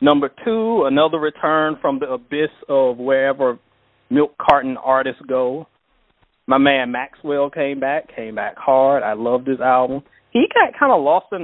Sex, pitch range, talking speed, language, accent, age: male, 130-170 Hz, 165 wpm, English, American, 30-49